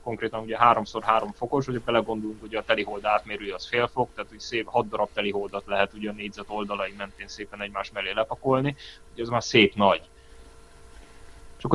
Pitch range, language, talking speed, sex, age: 100-115 Hz, Hungarian, 185 wpm, male, 30-49